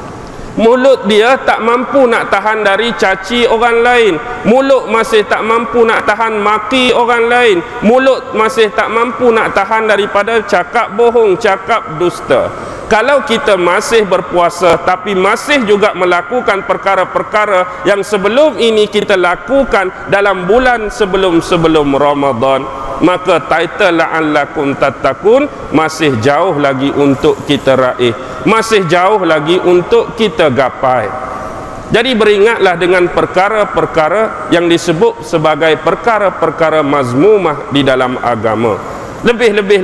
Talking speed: 115 wpm